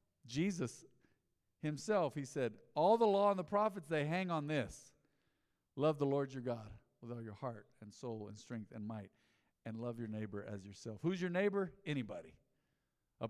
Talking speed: 180 wpm